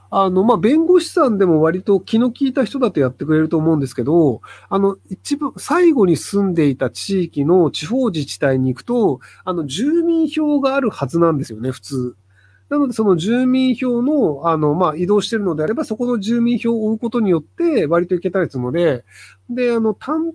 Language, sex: Japanese, male